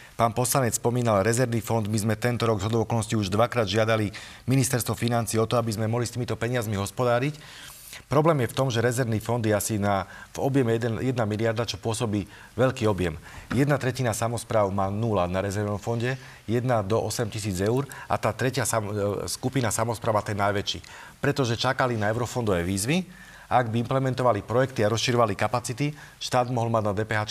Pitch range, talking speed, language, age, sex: 110-130 Hz, 180 wpm, Slovak, 40-59, male